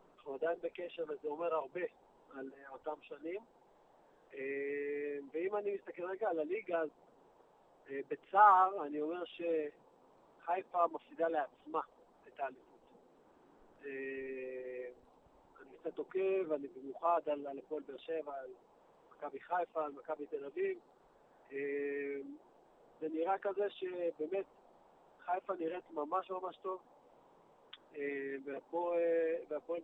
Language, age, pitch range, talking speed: Hebrew, 40-59, 150-195 Hz, 100 wpm